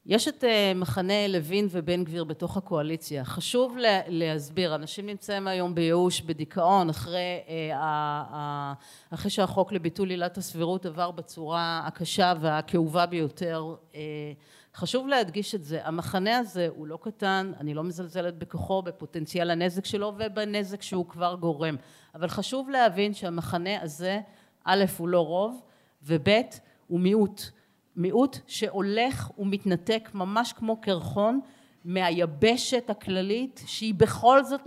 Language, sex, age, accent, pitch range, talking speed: Hebrew, female, 40-59, native, 170-215 Hz, 125 wpm